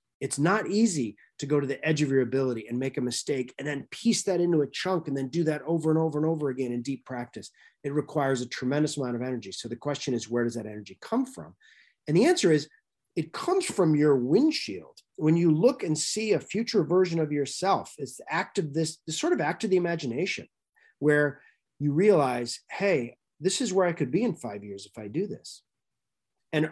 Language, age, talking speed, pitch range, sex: English, 30-49, 225 wpm, 125-170 Hz, male